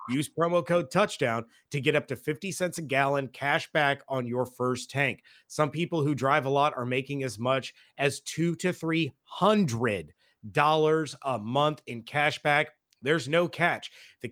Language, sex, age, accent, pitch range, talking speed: English, male, 30-49, American, 130-160 Hz, 180 wpm